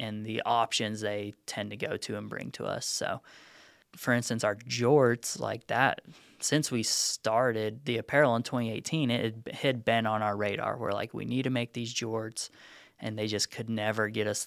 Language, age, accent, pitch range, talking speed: English, 20-39, American, 110-130 Hz, 195 wpm